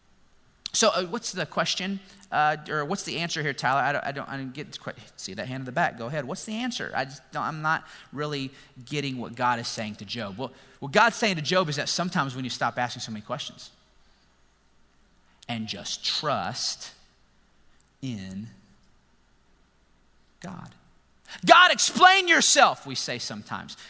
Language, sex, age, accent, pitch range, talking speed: English, male, 30-49, American, 125-175 Hz, 180 wpm